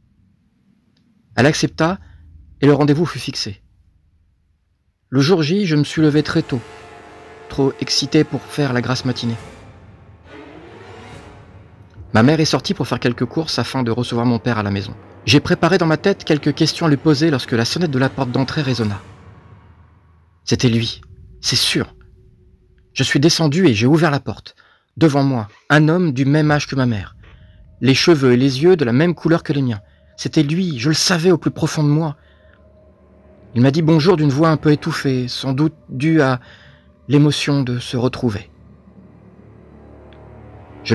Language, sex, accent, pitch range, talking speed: French, male, French, 95-150 Hz, 175 wpm